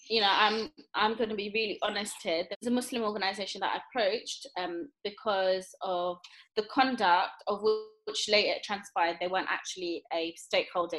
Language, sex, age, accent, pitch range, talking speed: English, female, 20-39, British, 200-255 Hz, 180 wpm